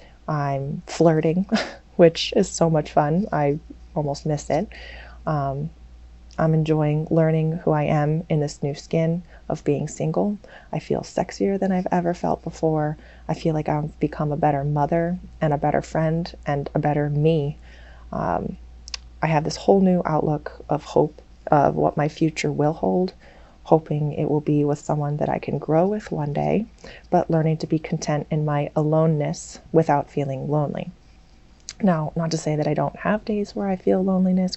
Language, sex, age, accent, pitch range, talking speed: English, female, 30-49, American, 150-180 Hz, 175 wpm